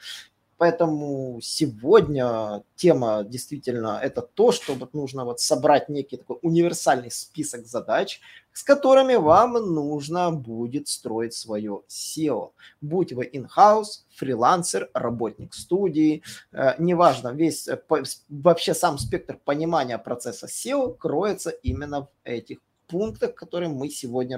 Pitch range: 130-175 Hz